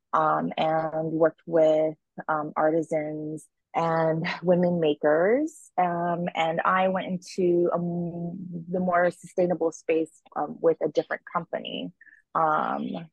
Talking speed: 110 wpm